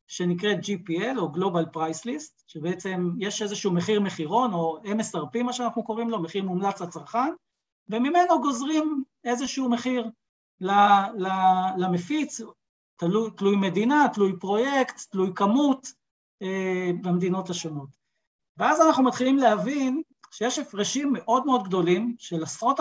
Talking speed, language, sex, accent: 120 wpm, Hebrew, male, native